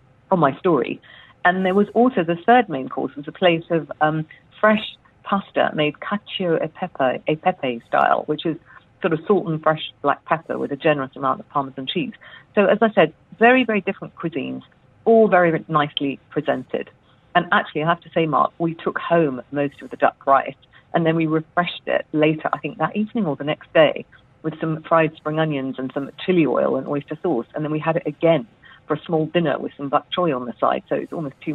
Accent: British